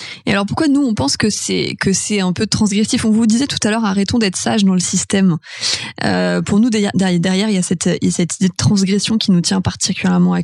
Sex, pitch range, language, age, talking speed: female, 190-225 Hz, French, 20-39, 260 wpm